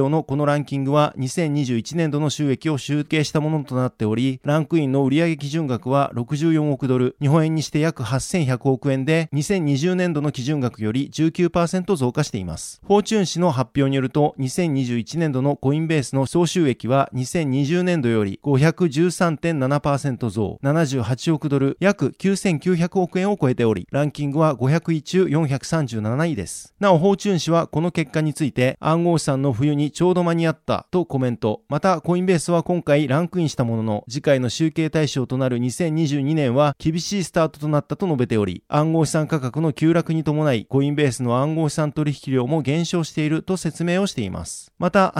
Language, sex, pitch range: Japanese, male, 135-165 Hz